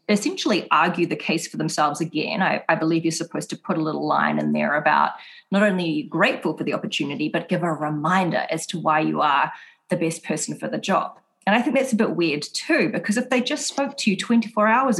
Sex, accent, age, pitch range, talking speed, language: female, Australian, 30-49, 170-225 Hz, 230 wpm, English